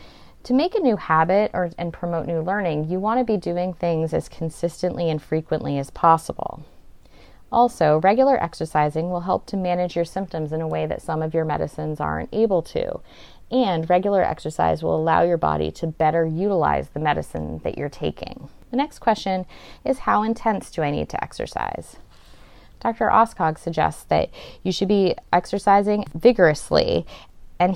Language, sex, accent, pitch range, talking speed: English, female, American, 160-210 Hz, 165 wpm